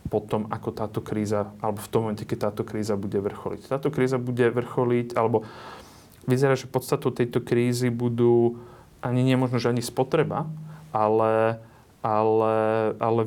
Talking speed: 145 wpm